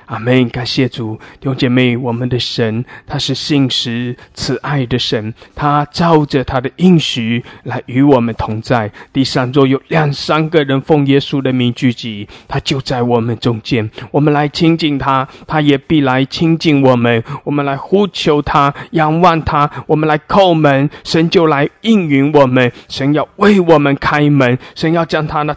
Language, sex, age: English, male, 20-39